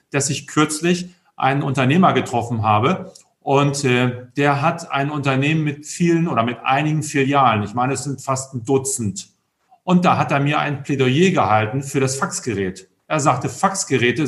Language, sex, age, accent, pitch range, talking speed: German, male, 40-59, German, 135-170 Hz, 170 wpm